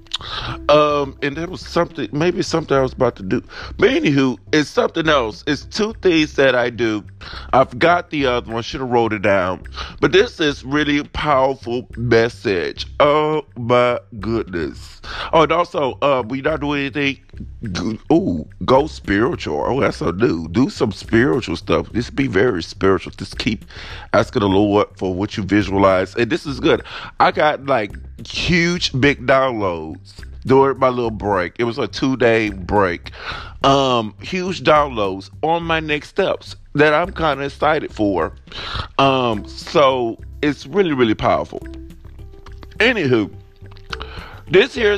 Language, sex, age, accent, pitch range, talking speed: English, male, 30-49, American, 105-150 Hz, 155 wpm